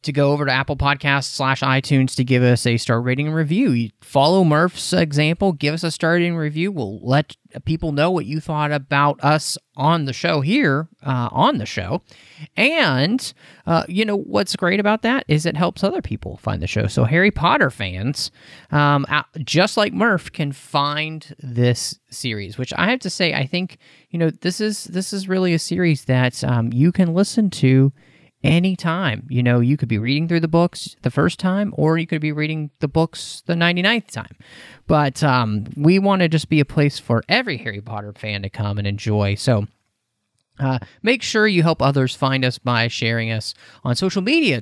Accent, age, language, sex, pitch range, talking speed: American, 30-49, English, male, 125-170 Hz, 200 wpm